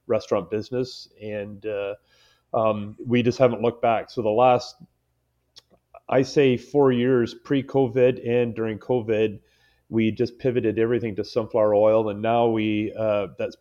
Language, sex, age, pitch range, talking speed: English, male, 30-49, 110-135 Hz, 150 wpm